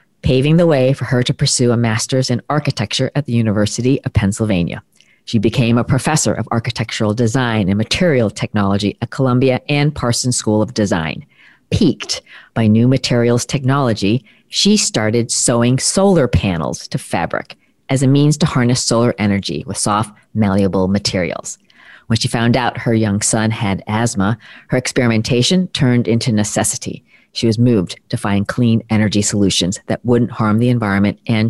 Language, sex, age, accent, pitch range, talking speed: English, female, 40-59, American, 110-135 Hz, 160 wpm